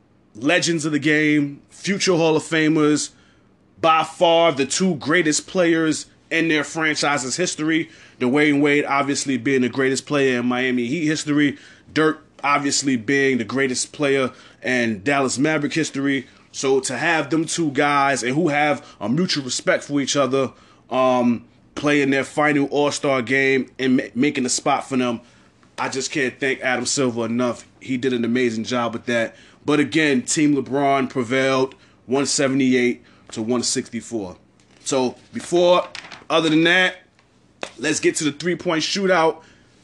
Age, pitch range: 20-39, 130-160 Hz